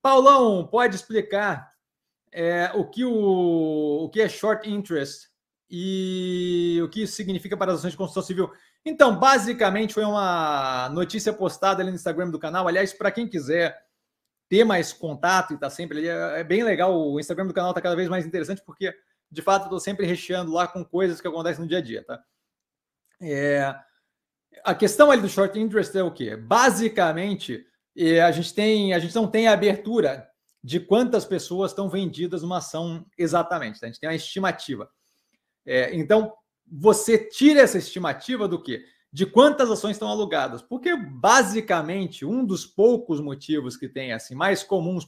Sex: male